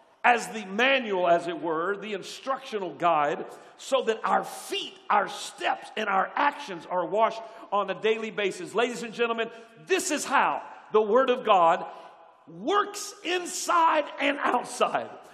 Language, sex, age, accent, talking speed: English, male, 50-69, American, 150 wpm